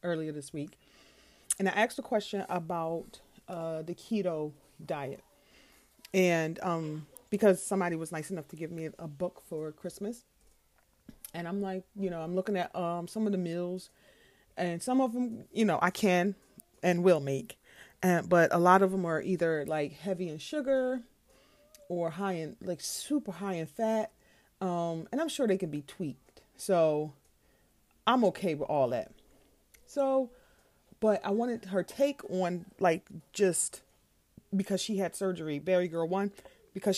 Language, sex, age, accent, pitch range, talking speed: English, female, 30-49, American, 165-200 Hz, 165 wpm